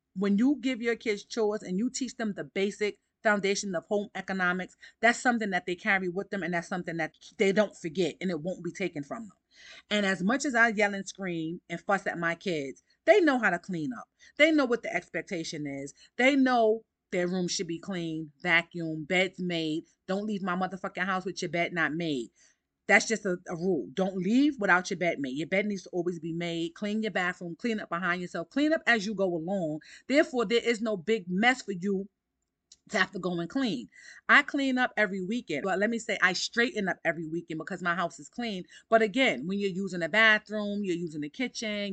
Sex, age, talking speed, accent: female, 30-49, 225 wpm, American